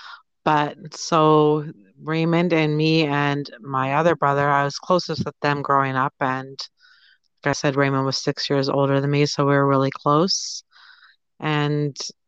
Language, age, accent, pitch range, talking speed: English, 30-49, American, 140-165 Hz, 160 wpm